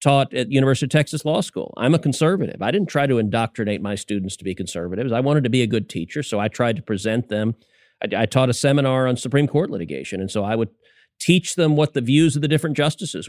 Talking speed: 250 wpm